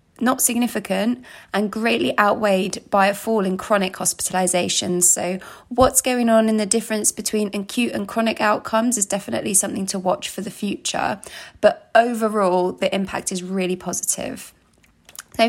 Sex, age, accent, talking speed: female, 20-39, British, 150 wpm